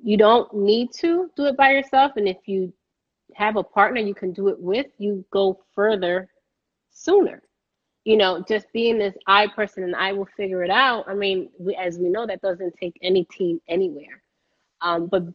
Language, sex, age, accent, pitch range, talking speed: English, female, 30-49, American, 175-230 Hz, 190 wpm